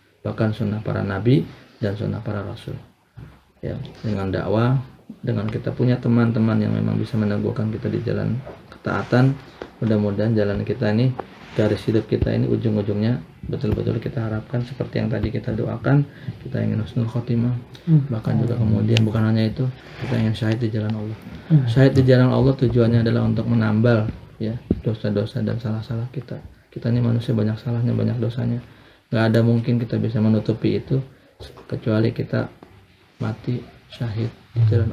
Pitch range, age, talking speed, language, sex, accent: 110-125 Hz, 20-39, 150 wpm, Indonesian, male, native